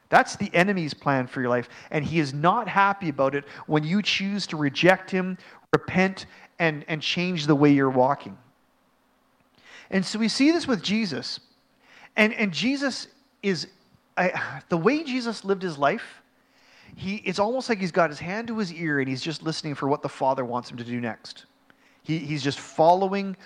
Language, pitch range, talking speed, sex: English, 145-195 Hz, 180 wpm, male